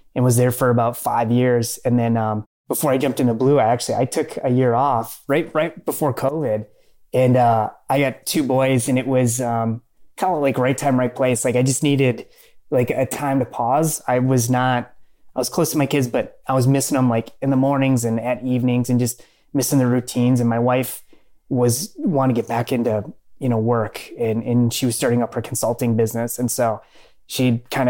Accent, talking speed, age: American, 220 wpm, 20-39